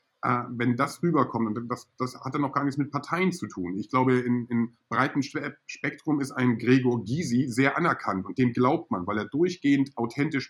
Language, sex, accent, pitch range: German, male, German, 115-135 Hz